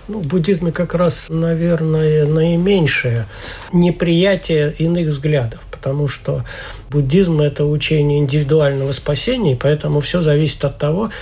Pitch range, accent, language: 140-170 Hz, native, Russian